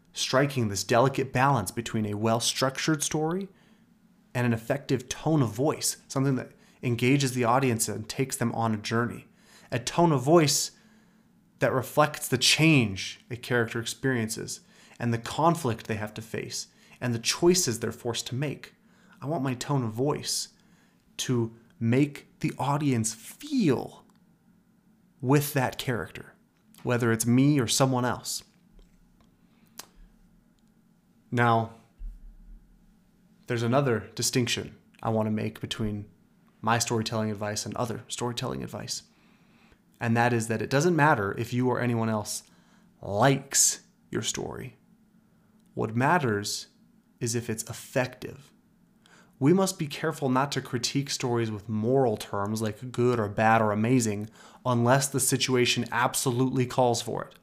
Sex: male